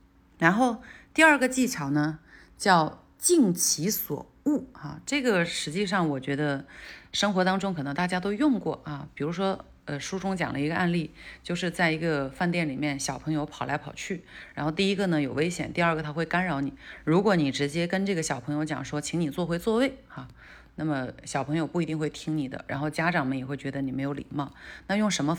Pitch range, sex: 145-195 Hz, female